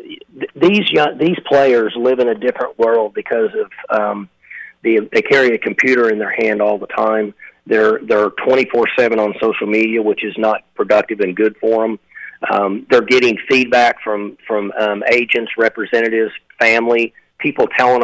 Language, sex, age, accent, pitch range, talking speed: English, male, 40-59, American, 110-150 Hz, 165 wpm